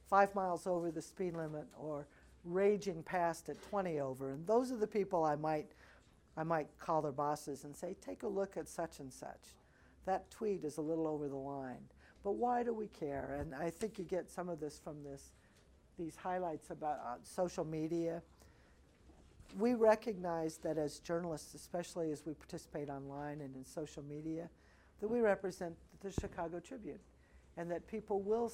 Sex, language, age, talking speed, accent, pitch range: female, English, 50-69, 180 wpm, American, 145-190 Hz